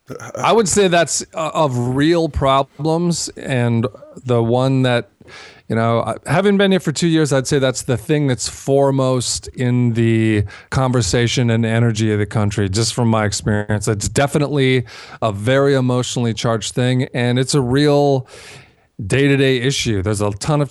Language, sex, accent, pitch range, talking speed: English, male, American, 120-145 Hz, 165 wpm